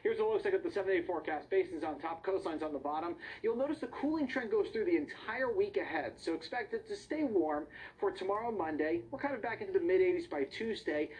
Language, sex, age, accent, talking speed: English, male, 40-59, American, 235 wpm